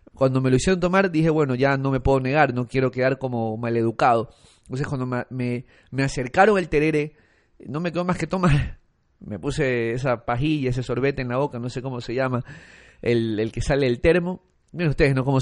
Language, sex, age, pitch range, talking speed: Spanish, male, 30-49, 120-140 Hz, 210 wpm